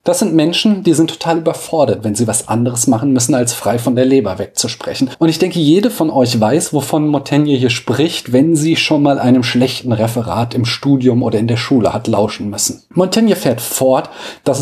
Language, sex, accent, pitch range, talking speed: German, male, German, 120-165 Hz, 205 wpm